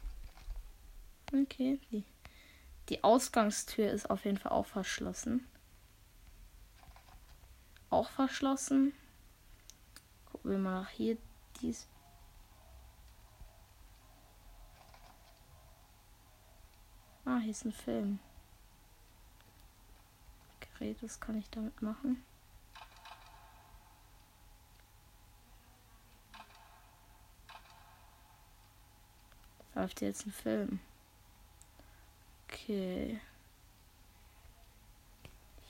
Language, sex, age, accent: German, female, 20-39, German